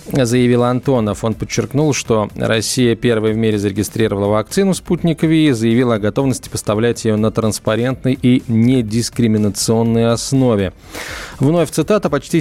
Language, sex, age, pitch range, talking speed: Russian, male, 20-39, 115-140 Hz, 130 wpm